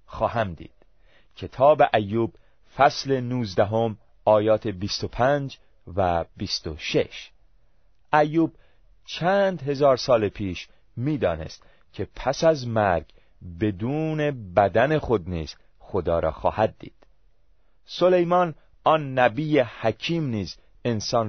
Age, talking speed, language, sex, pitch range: 40-59, 105 wpm, Persian, male, 95-145 Hz